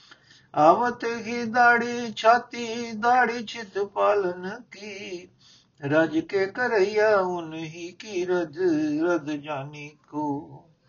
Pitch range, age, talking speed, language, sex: 145-215 Hz, 50-69, 90 wpm, Punjabi, male